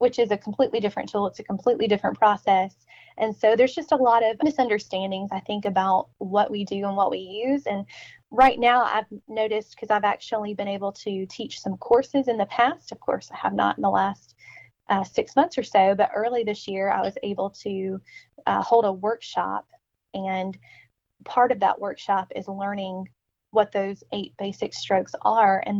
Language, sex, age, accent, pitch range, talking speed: English, female, 20-39, American, 195-235 Hz, 200 wpm